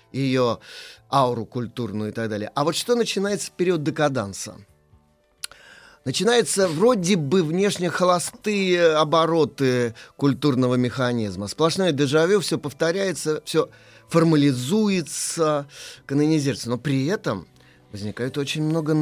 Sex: male